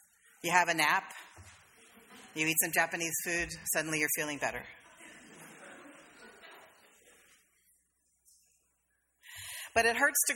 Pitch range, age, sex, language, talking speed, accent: 155-215 Hz, 40-59, female, English, 100 wpm, American